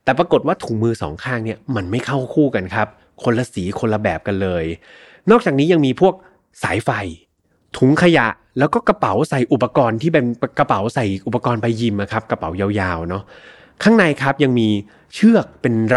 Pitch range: 105-145 Hz